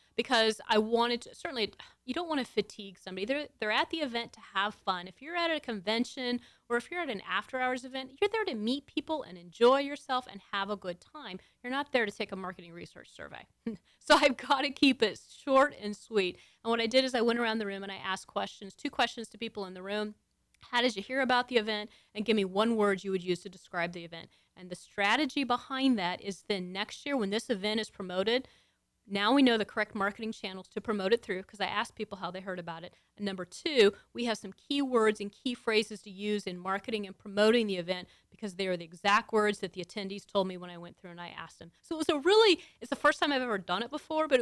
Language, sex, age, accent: English, female, 30-49, American